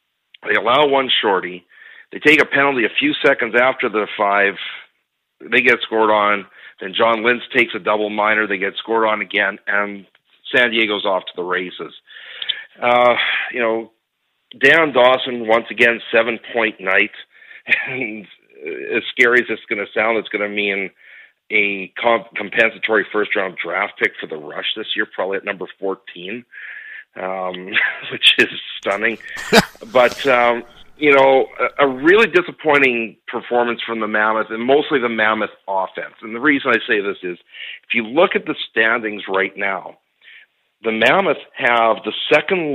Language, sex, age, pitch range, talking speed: English, male, 50-69, 105-135 Hz, 160 wpm